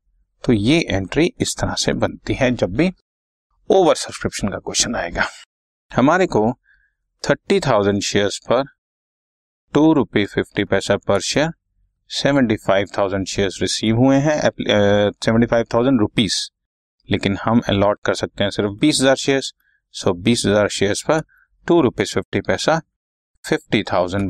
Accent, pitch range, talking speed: native, 100-145 Hz, 140 wpm